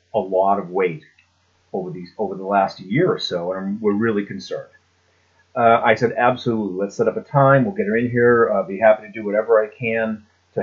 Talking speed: 220 wpm